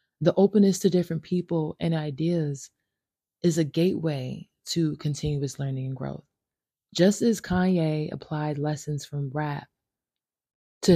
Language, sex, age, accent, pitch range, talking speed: English, female, 20-39, American, 145-170 Hz, 125 wpm